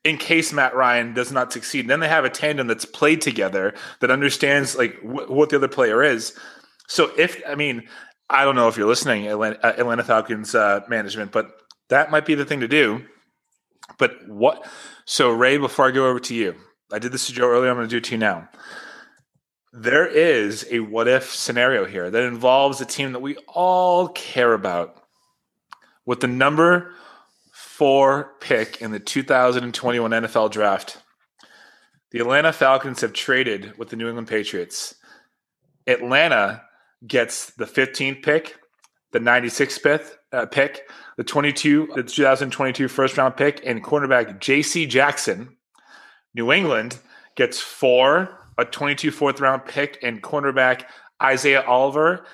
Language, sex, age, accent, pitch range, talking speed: English, male, 30-49, American, 120-145 Hz, 155 wpm